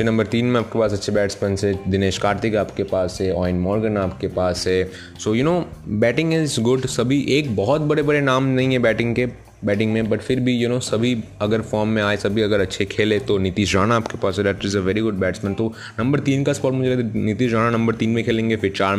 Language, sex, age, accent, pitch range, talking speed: Hindi, male, 20-39, native, 100-120 Hz, 235 wpm